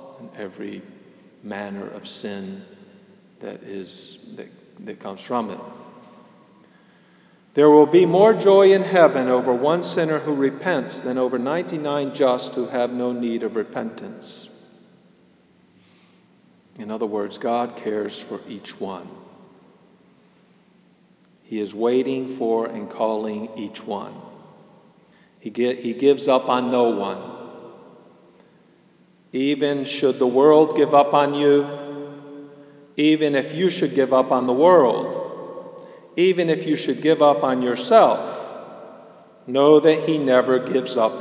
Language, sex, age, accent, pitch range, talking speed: English, male, 50-69, American, 120-175 Hz, 130 wpm